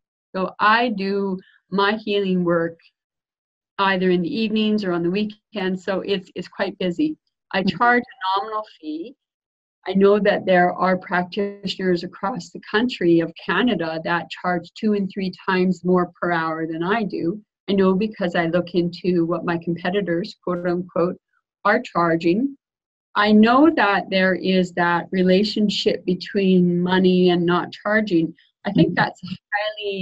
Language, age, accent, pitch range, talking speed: English, 40-59, American, 175-205 Hz, 150 wpm